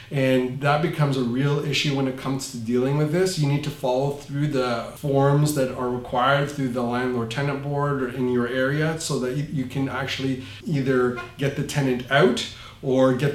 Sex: male